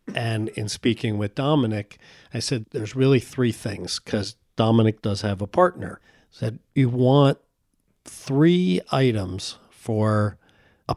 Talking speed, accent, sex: 135 wpm, American, male